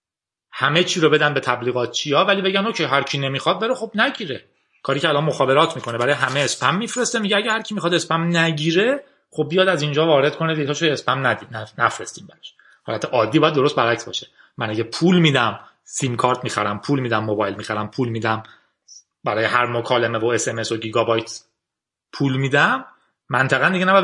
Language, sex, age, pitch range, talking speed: Persian, male, 30-49, 120-165 Hz, 185 wpm